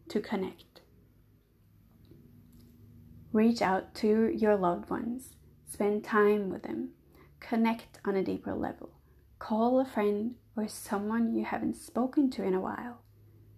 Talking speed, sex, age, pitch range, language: 130 wpm, female, 30-49, 185-230 Hz, English